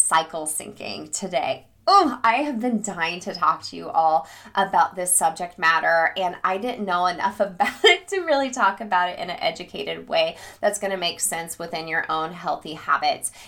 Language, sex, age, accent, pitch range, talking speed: English, female, 20-39, American, 175-235 Hz, 190 wpm